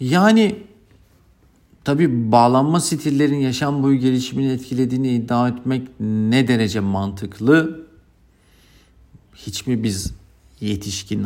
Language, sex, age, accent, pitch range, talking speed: Turkish, male, 50-69, native, 95-115 Hz, 90 wpm